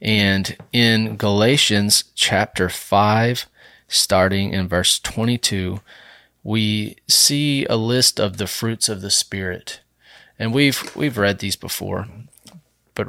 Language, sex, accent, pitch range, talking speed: English, male, American, 95-115 Hz, 120 wpm